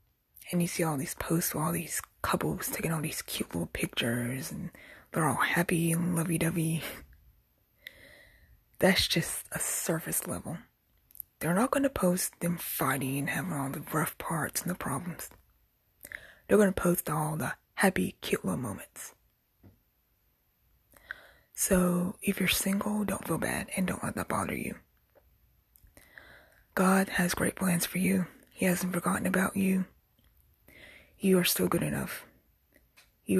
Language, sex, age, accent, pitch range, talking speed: English, female, 20-39, American, 170-195 Hz, 150 wpm